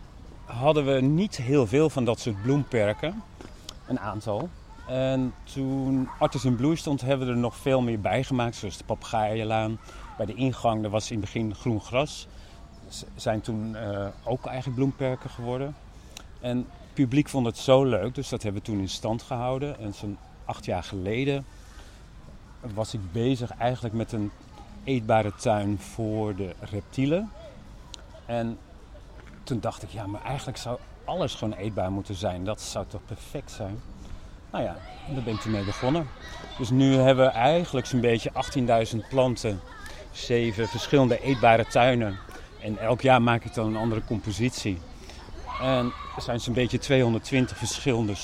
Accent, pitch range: Dutch, 105-130 Hz